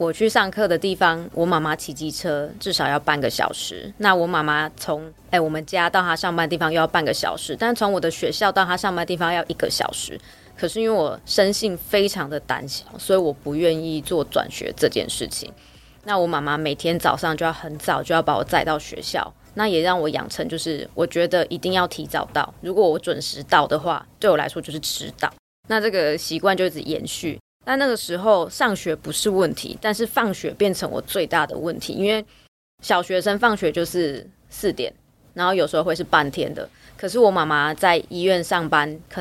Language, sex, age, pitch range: Chinese, female, 20-39, 155-200 Hz